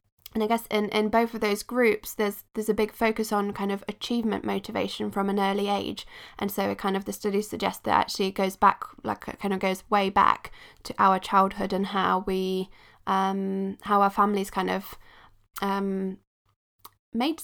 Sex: female